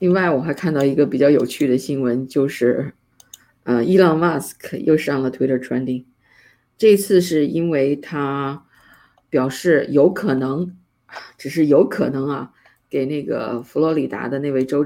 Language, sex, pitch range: Chinese, female, 130-160 Hz